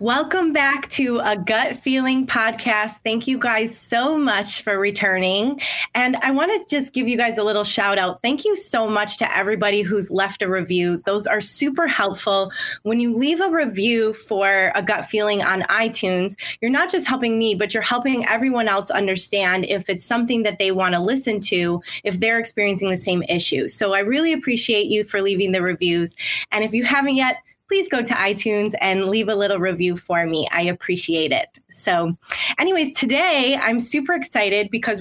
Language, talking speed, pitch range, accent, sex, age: English, 190 wpm, 195-255 Hz, American, female, 20-39